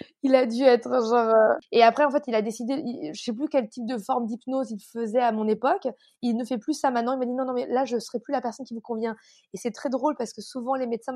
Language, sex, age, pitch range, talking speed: French, female, 20-39, 230-275 Hz, 305 wpm